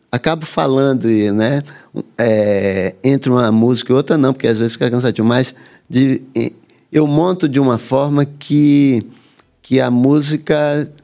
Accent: Brazilian